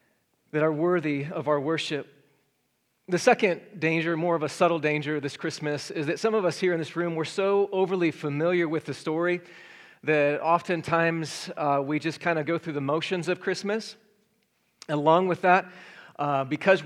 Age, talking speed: 40-59, 180 wpm